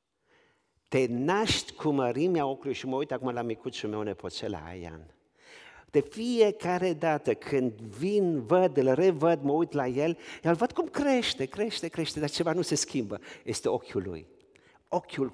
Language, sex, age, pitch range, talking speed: Romanian, male, 50-69, 110-165 Hz, 160 wpm